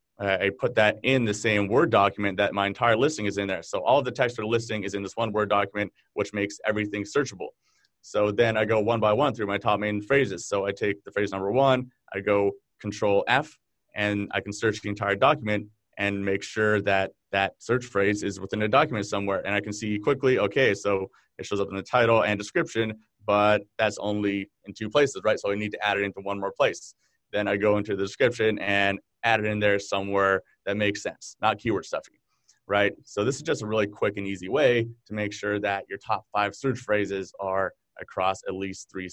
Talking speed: 230 wpm